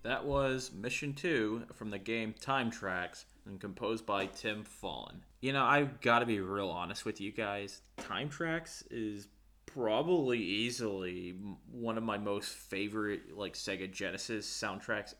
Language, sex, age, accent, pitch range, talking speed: English, male, 20-39, American, 100-125 Hz, 155 wpm